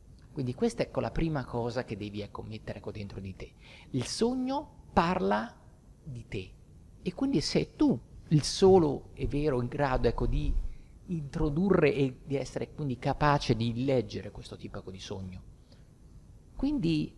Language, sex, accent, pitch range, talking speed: Italian, male, native, 115-175 Hz, 160 wpm